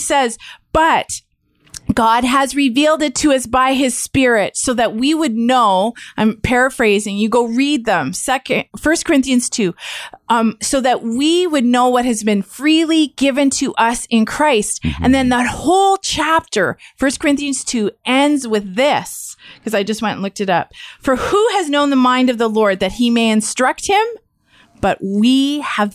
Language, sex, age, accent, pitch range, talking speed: English, female, 30-49, American, 215-275 Hz, 180 wpm